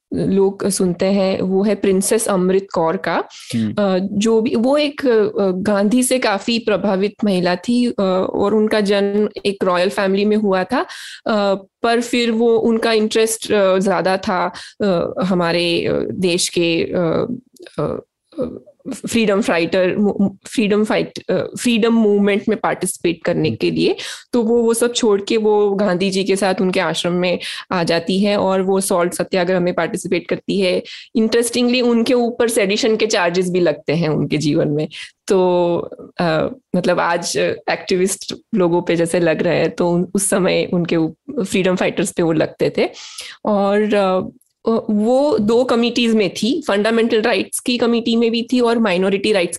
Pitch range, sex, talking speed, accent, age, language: 185-230 Hz, female, 150 wpm, native, 20-39, Hindi